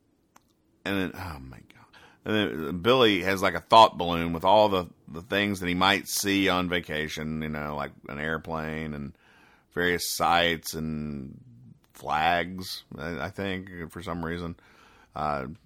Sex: male